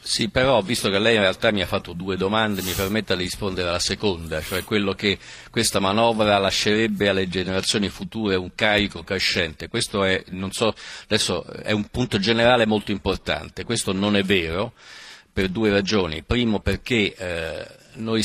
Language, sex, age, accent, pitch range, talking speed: Italian, male, 50-69, native, 95-115 Hz, 170 wpm